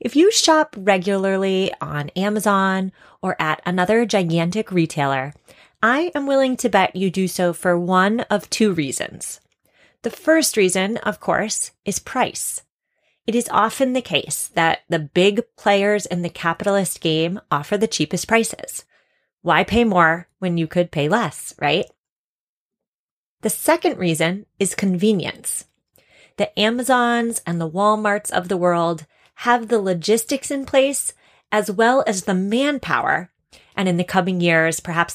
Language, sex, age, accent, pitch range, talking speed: English, female, 30-49, American, 170-225 Hz, 145 wpm